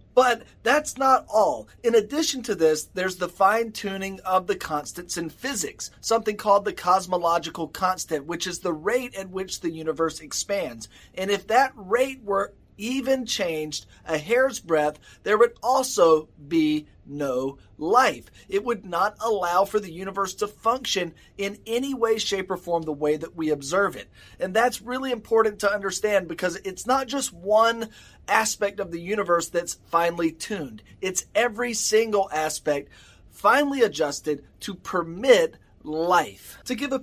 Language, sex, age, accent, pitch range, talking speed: English, male, 30-49, American, 165-230 Hz, 155 wpm